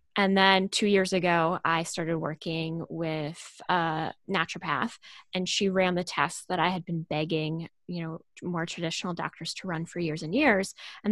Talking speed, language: 180 wpm, English